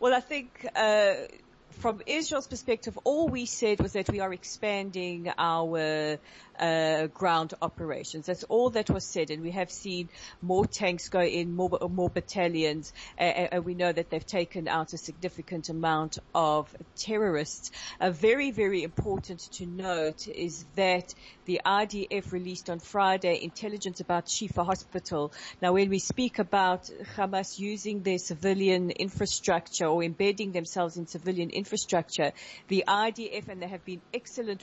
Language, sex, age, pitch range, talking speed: English, female, 40-59, 175-215 Hz, 155 wpm